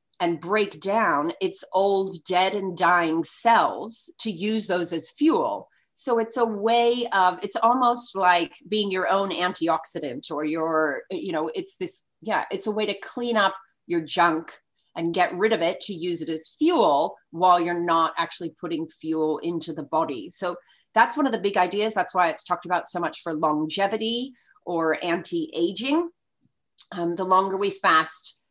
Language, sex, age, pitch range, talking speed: English, female, 30-49, 165-220 Hz, 175 wpm